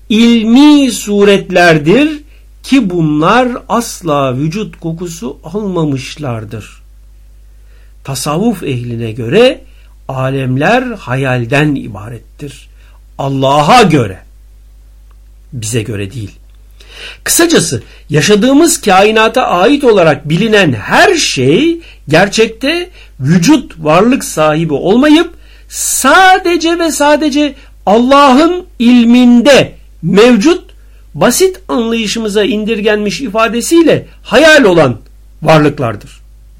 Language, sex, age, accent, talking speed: Turkish, male, 60-79, native, 75 wpm